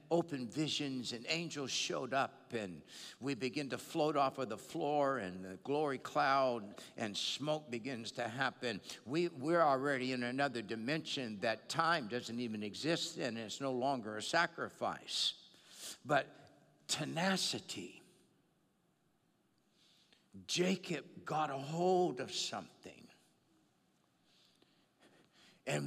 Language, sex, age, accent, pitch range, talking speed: English, male, 60-79, American, 120-155 Hz, 120 wpm